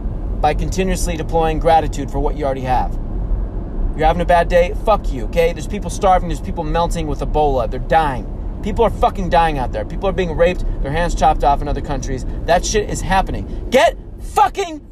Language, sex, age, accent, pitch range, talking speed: English, male, 30-49, American, 125-185 Hz, 200 wpm